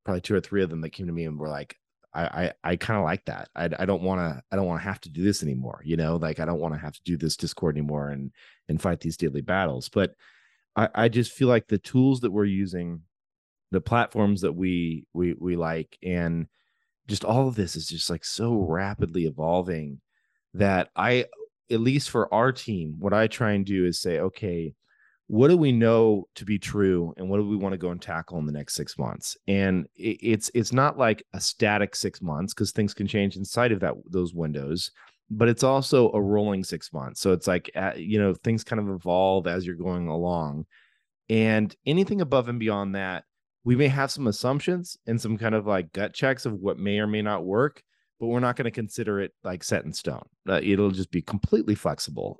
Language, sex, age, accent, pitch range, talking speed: English, male, 30-49, American, 85-110 Hz, 230 wpm